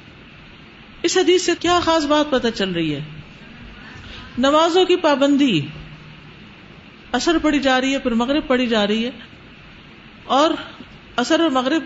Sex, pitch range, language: female, 205-295 Hz, Urdu